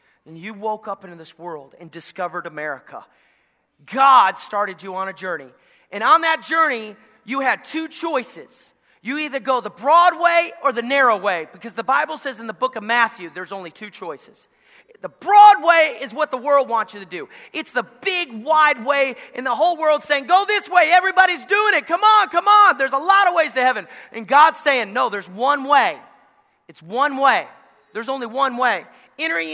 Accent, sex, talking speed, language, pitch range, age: American, male, 205 wpm, English, 205-325 Hz, 30-49